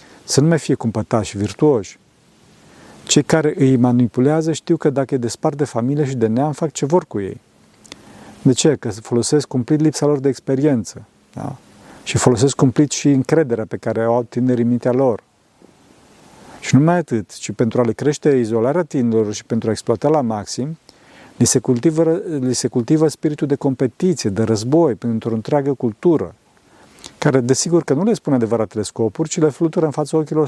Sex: male